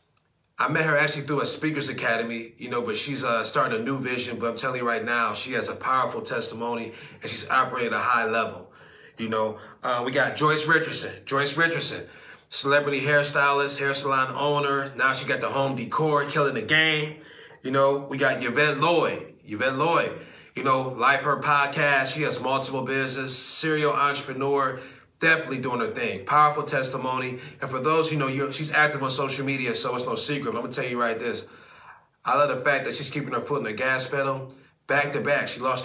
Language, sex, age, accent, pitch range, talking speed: English, male, 30-49, American, 130-145 Hz, 205 wpm